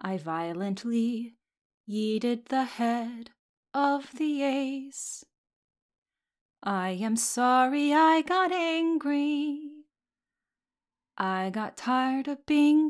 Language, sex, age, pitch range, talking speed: English, female, 20-39, 225-285 Hz, 90 wpm